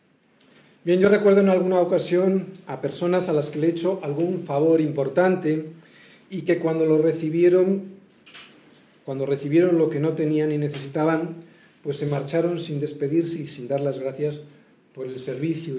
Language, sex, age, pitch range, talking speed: Spanish, male, 40-59, 140-185 Hz, 165 wpm